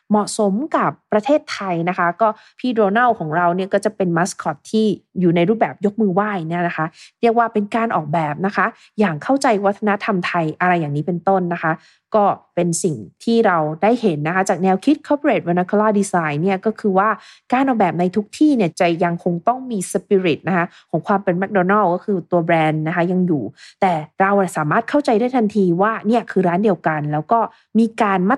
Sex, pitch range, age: female, 170-220 Hz, 20-39